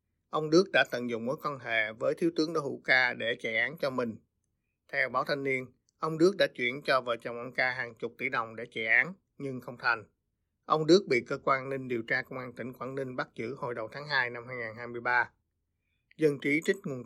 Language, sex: Vietnamese, male